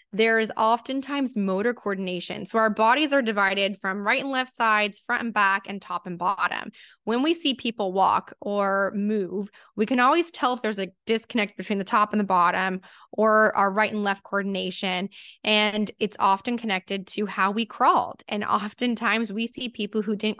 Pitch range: 195-230 Hz